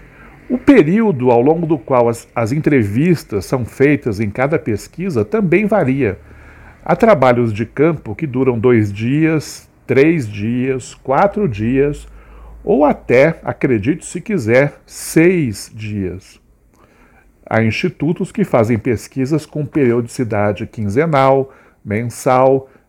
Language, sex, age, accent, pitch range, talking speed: Portuguese, male, 60-79, Brazilian, 115-170 Hz, 115 wpm